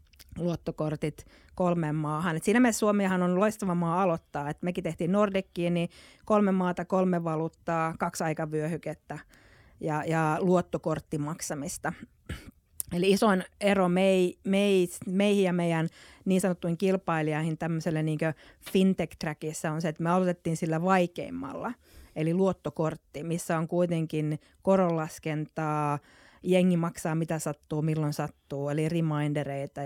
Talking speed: 120 wpm